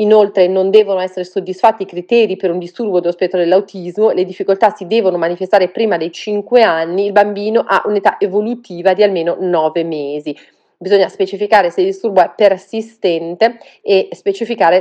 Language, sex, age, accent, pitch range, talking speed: Italian, female, 30-49, native, 185-230 Hz, 160 wpm